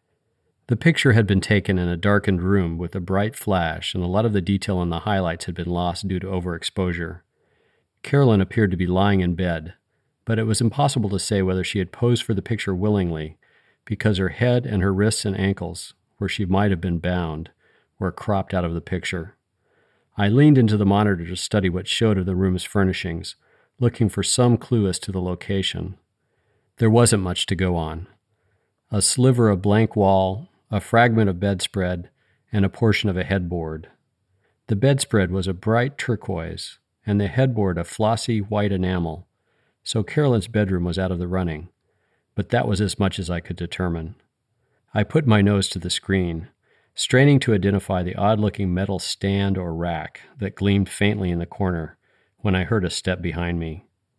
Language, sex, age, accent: English, male, 40-59, American